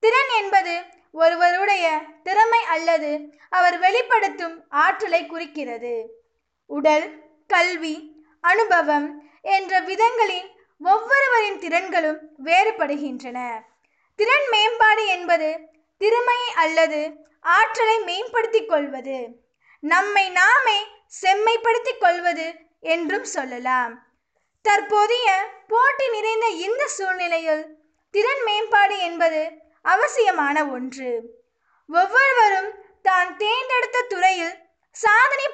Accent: native